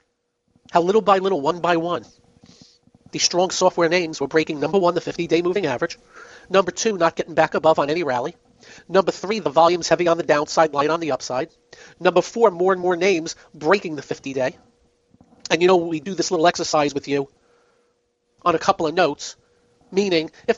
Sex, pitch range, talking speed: male, 165-215 Hz, 190 wpm